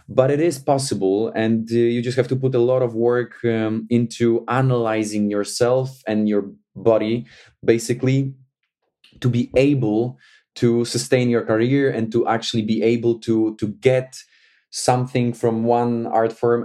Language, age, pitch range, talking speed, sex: English, 20-39, 110-125 Hz, 155 wpm, male